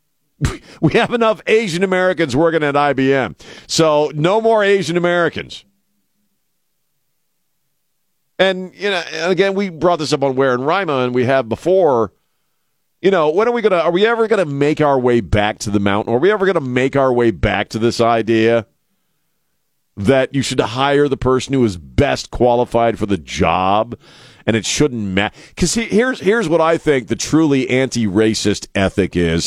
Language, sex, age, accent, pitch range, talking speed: English, male, 50-69, American, 115-165 Hz, 175 wpm